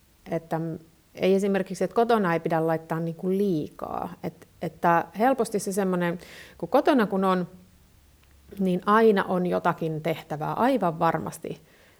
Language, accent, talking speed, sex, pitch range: Finnish, native, 125 wpm, female, 170-220 Hz